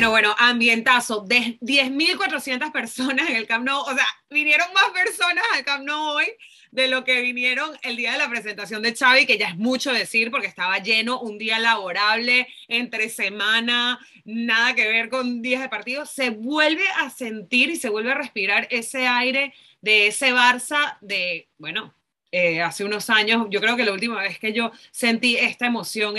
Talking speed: 185 wpm